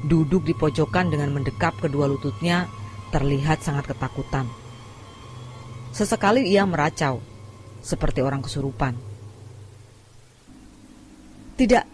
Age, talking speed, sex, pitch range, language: 30-49, 85 wpm, female, 125-175 Hz, Indonesian